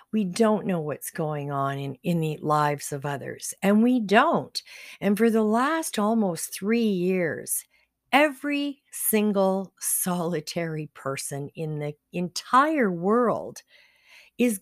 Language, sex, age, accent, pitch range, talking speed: English, female, 50-69, American, 160-245 Hz, 125 wpm